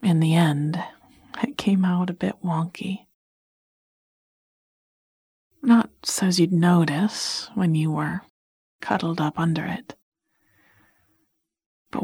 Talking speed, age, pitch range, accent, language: 110 wpm, 40-59, 155-195 Hz, American, English